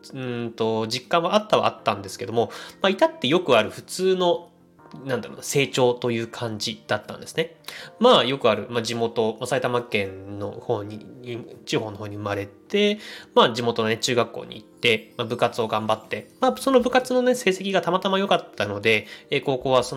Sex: male